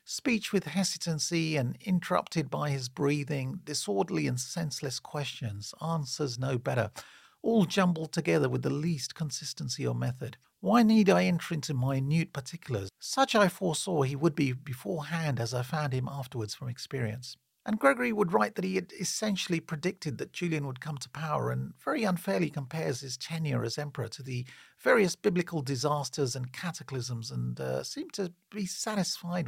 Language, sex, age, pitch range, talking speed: English, male, 40-59, 130-170 Hz, 165 wpm